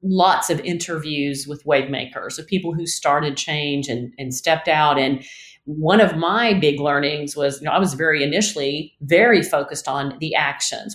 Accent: American